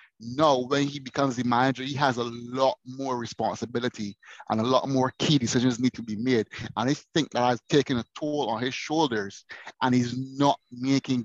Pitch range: 115-135 Hz